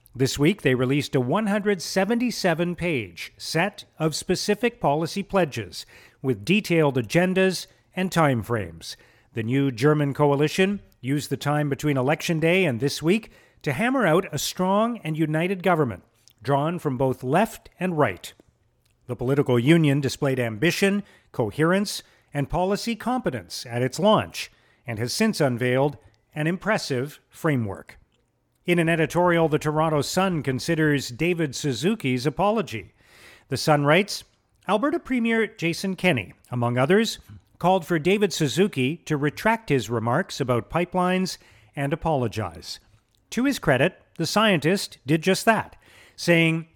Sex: male